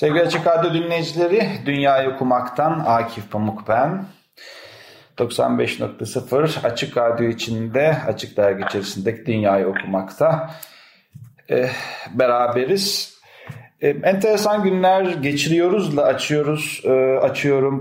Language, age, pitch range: Turkish, 40-59, 115-145 Hz